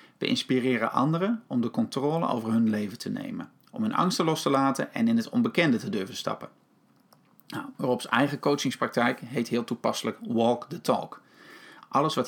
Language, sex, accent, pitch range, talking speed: Dutch, male, Dutch, 115-190 Hz, 175 wpm